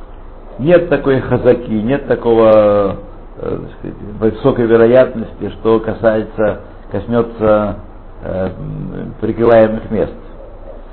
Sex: male